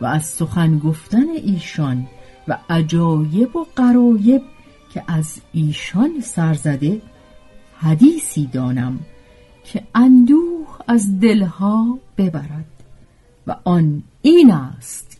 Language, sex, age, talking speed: Persian, female, 50-69, 90 wpm